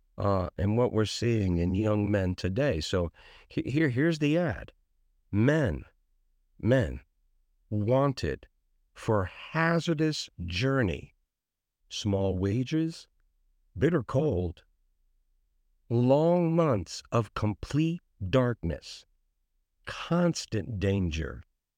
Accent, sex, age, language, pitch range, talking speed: American, male, 50-69, English, 85-135 Hz, 90 wpm